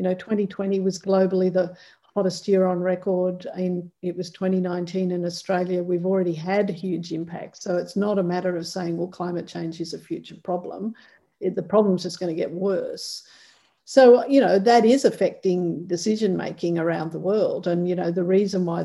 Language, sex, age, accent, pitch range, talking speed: English, female, 50-69, Australian, 175-195 Hz, 195 wpm